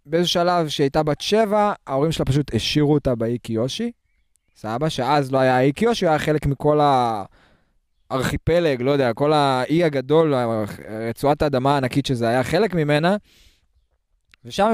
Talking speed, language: 145 wpm, Hebrew